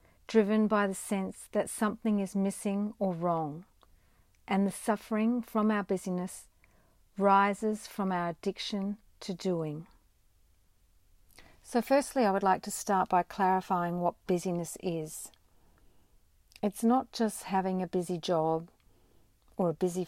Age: 50-69